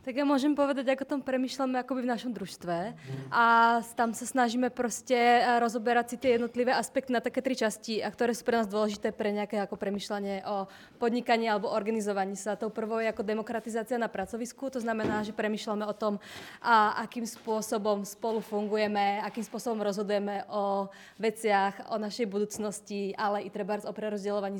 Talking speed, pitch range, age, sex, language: 175 wpm, 205-230 Hz, 20-39, female, Czech